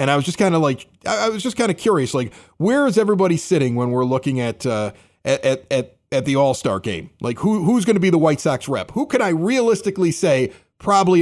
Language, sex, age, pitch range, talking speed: English, male, 40-59, 140-220 Hz, 235 wpm